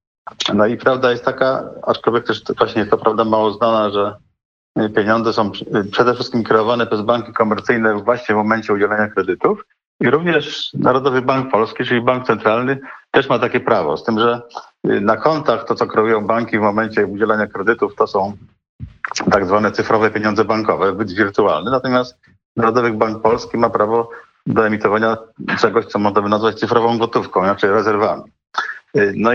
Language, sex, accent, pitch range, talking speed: Polish, male, native, 110-125 Hz, 160 wpm